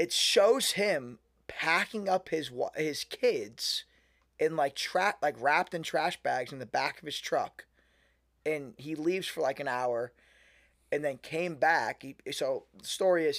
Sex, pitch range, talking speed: male, 125-180 Hz, 170 wpm